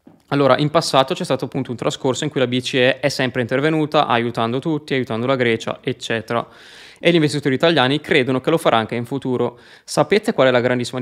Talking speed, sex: 200 wpm, male